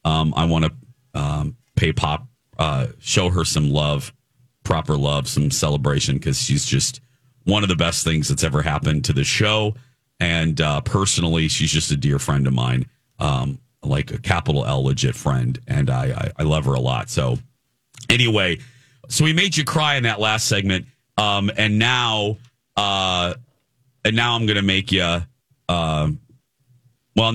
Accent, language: American, English